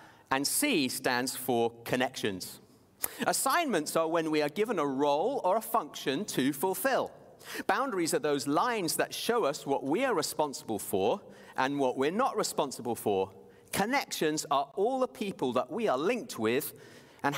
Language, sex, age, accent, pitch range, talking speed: English, male, 40-59, British, 145-230 Hz, 160 wpm